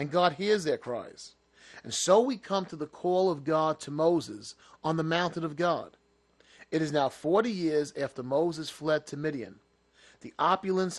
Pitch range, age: 155-180 Hz, 30-49